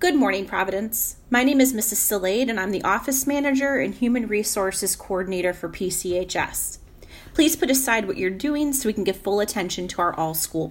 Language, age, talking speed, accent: English, 30-49, 195 wpm, American